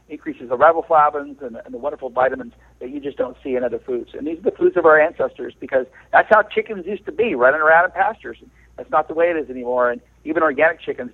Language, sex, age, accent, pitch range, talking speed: English, male, 50-69, American, 130-160 Hz, 250 wpm